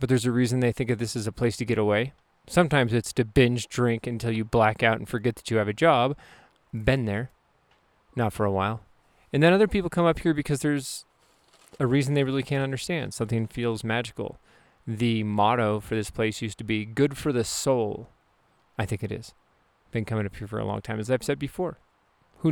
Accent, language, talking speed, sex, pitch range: American, English, 220 wpm, male, 110-135 Hz